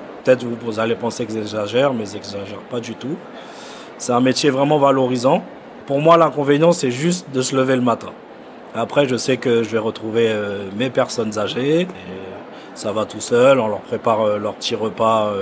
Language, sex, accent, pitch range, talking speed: French, male, French, 110-135 Hz, 185 wpm